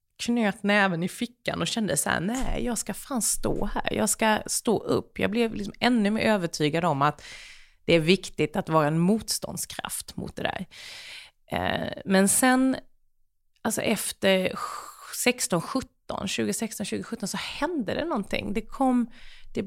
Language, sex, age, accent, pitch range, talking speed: Swedish, female, 30-49, native, 180-230 Hz, 150 wpm